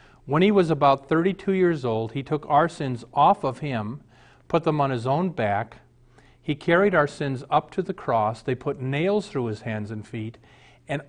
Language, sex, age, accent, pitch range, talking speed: English, male, 40-59, American, 120-155 Hz, 200 wpm